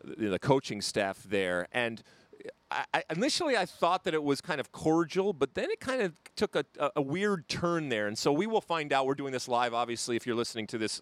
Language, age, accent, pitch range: English, 40-59, American, 115-160 Hz